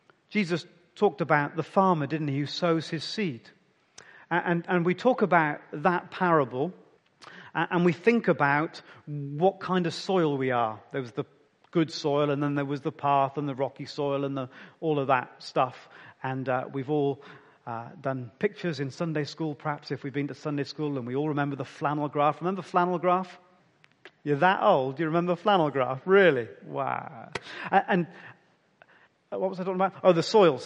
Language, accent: English, British